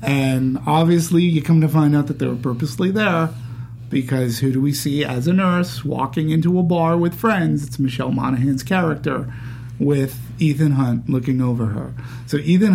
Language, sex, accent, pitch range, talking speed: English, male, American, 120-170 Hz, 180 wpm